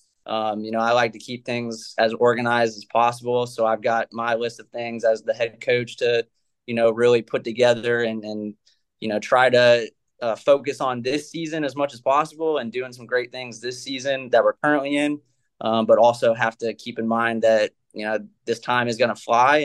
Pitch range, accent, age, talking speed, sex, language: 115-130 Hz, American, 20-39, 220 wpm, male, English